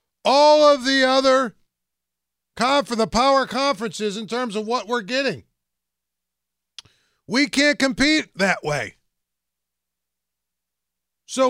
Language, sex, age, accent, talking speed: English, male, 50-69, American, 110 wpm